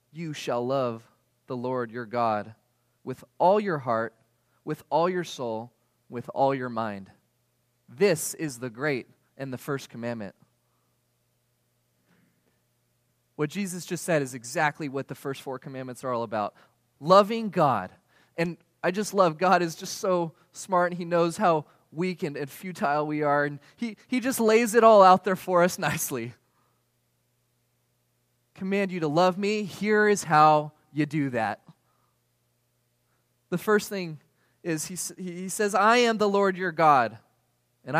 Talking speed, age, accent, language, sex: 155 wpm, 20-39, American, English, male